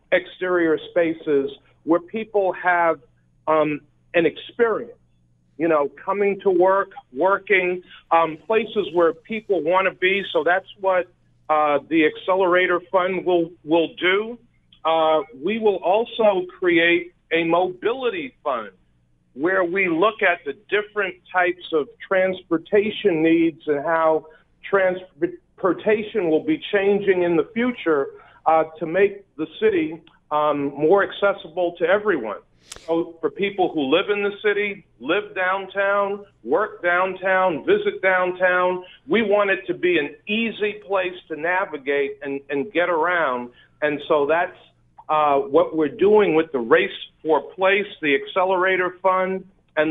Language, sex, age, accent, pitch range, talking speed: English, male, 40-59, American, 160-200 Hz, 135 wpm